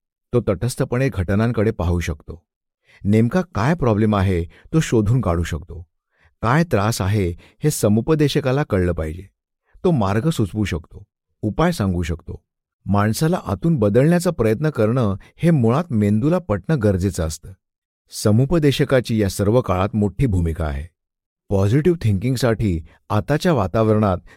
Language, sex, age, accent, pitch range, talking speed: Marathi, male, 50-69, native, 95-130 Hz, 125 wpm